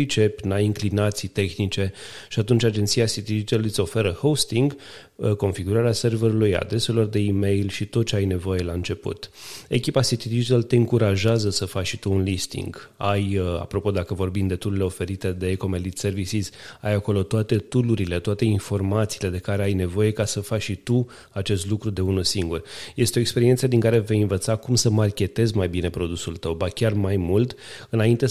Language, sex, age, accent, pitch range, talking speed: Romanian, male, 30-49, native, 95-110 Hz, 180 wpm